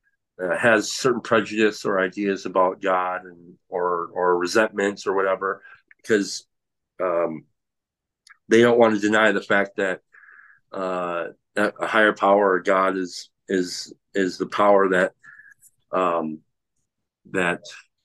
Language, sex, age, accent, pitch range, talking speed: English, male, 50-69, American, 95-115 Hz, 125 wpm